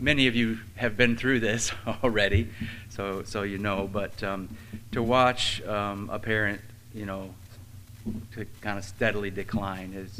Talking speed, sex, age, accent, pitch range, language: 160 wpm, male, 40-59, American, 95-110 Hz, English